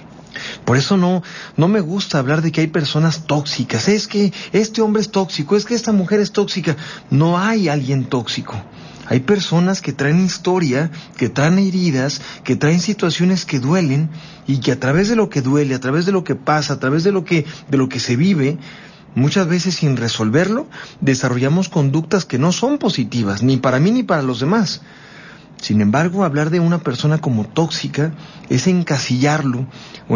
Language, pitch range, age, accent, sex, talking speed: Spanish, 140-190 Hz, 40-59, Mexican, male, 185 wpm